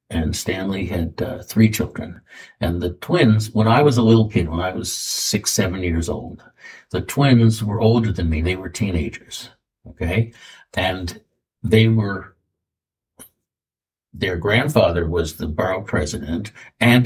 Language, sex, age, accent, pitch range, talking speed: English, male, 60-79, American, 85-110 Hz, 150 wpm